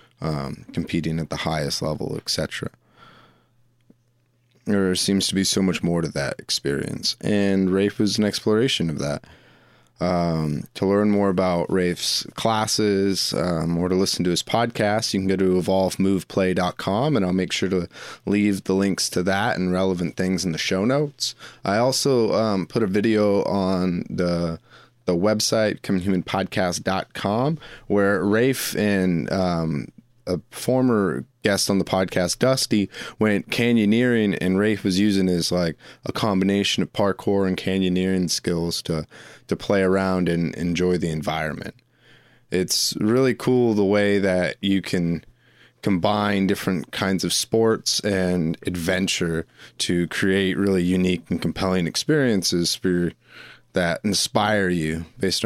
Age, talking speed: 20-39, 145 wpm